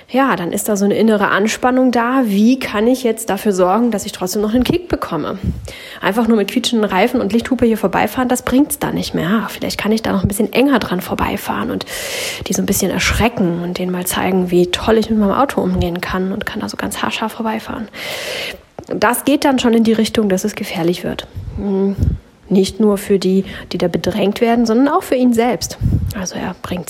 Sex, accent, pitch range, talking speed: female, German, 195-250 Hz, 225 wpm